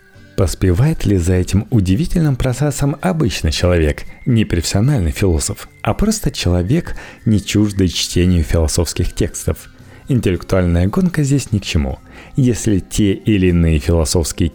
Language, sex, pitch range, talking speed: Russian, male, 85-110 Hz, 120 wpm